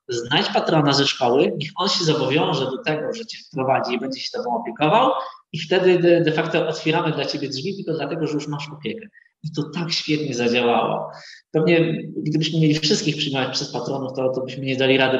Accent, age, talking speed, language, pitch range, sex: native, 20-39, 195 wpm, Polish, 130-160 Hz, male